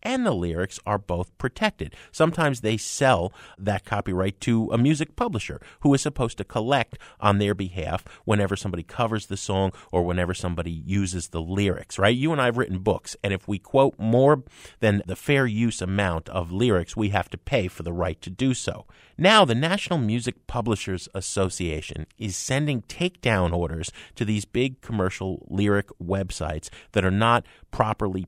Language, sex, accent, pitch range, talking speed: English, male, American, 90-120 Hz, 175 wpm